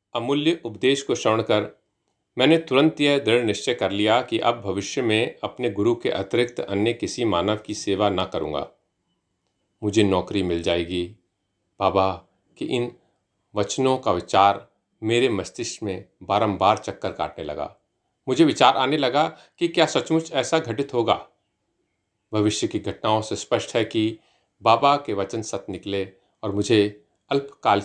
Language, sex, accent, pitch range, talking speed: Hindi, male, native, 100-120 Hz, 150 wpm